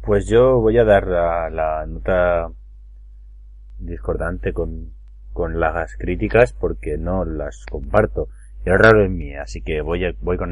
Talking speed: 160 wpm